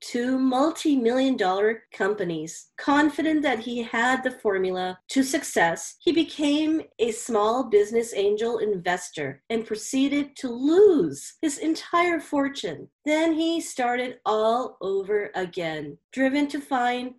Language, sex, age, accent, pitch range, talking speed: English, female, 40-59, American, 210-295 Hz, 120 wpm